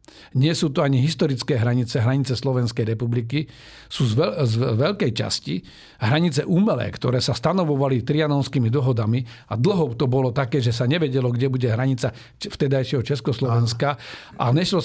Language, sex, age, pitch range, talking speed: Slovak, male, 50-69, 120-145 Hz, 145 wpm